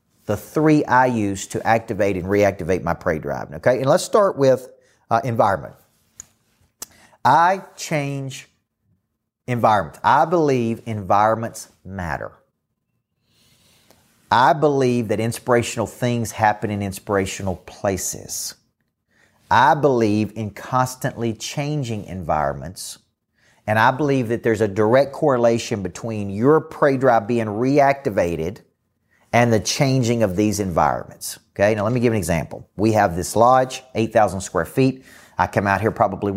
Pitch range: 100-125 Hz